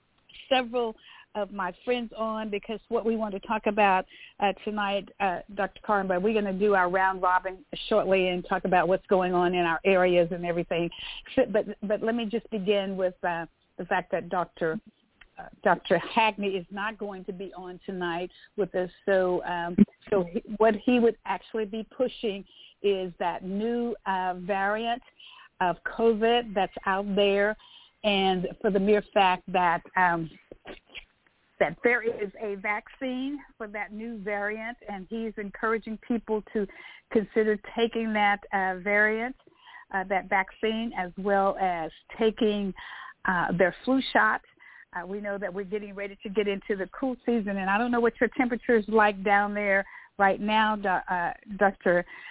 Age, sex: 50-69, female